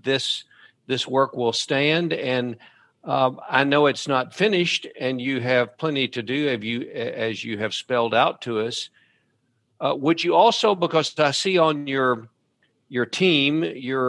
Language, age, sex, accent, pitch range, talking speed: English, 50-69, male, American, 115-140 Hz, 165 wpm